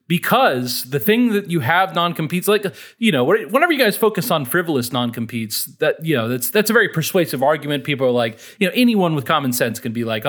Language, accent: English, American